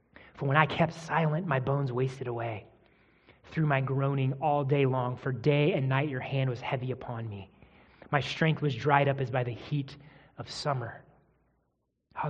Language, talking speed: English, 180 wpm